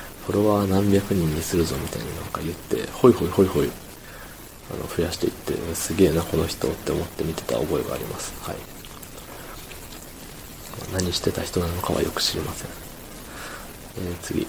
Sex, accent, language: male, native, Japanese